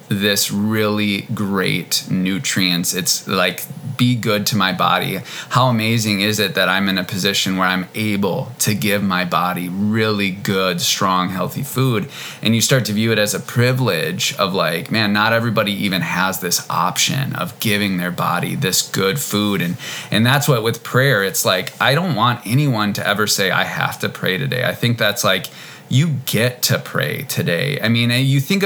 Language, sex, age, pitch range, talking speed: English, male, 20-39, 100-130 Hz, 190 wpm